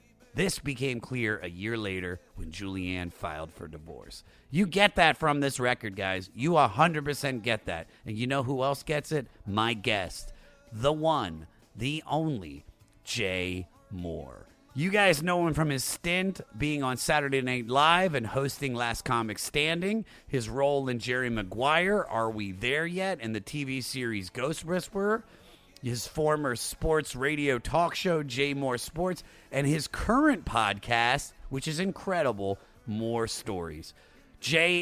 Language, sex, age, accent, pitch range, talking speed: English, male, 30-49, American, 110-155 Hz, 150 wpm